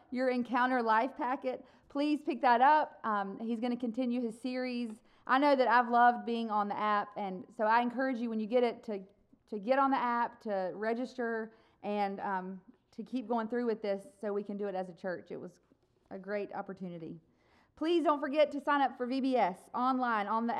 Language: English